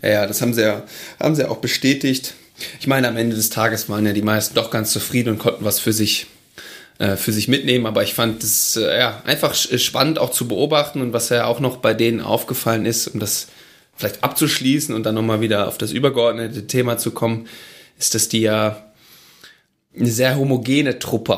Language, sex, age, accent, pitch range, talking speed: German, male, 20-39, German, 110-130 Hz, 210 wpm